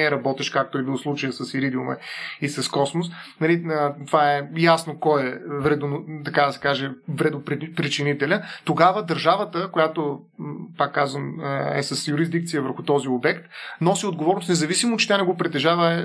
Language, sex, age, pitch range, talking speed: Bulgarian, male, 30-49, 150-180 Hz, 140 wpm